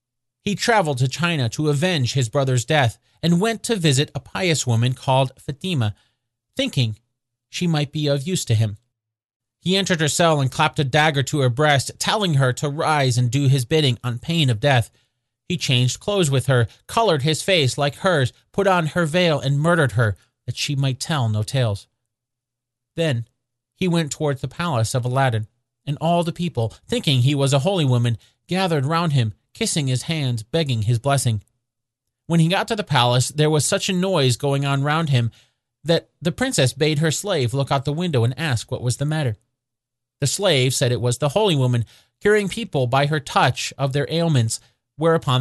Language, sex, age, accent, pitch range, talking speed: English, male, 40-59, American, 120-155 Hz, 195 wpm